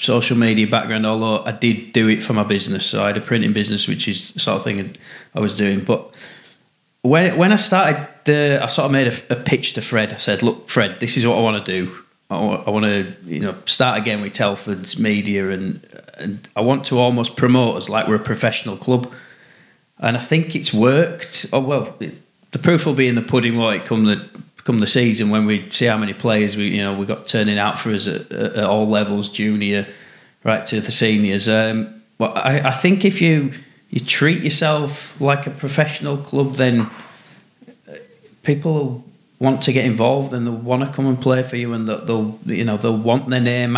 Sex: male